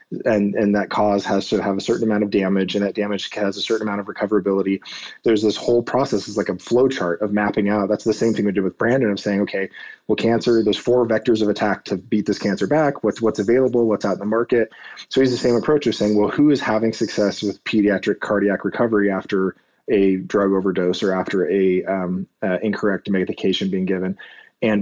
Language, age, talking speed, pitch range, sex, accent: English, 20-39, 230 wpm, 100-110 Hz, male, American